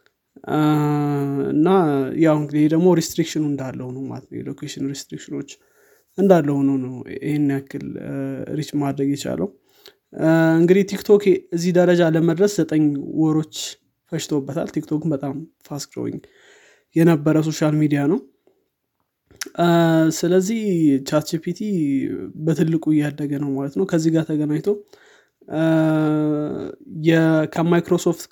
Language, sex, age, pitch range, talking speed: Amharic, male, 20-39, 145-175 Hz, 85 wpm